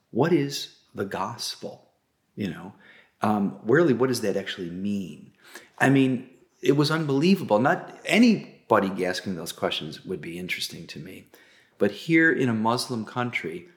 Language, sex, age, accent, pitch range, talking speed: English, male, 40-59, American, 110-140 Hz, 150 wpm